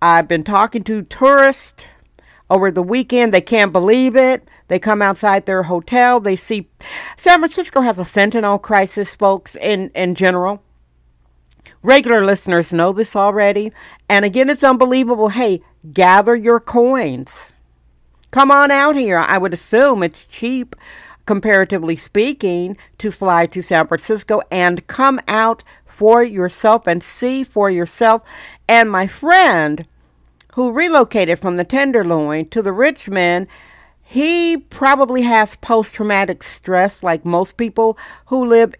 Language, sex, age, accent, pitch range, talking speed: English, female, 50-69, American, 185-235 Hz, 135 wpm